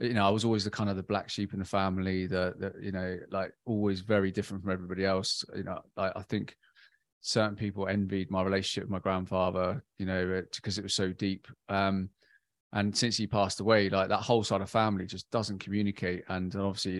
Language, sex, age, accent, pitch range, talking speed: English, male, 20-39, British, 95-105 Hz, 210 wpm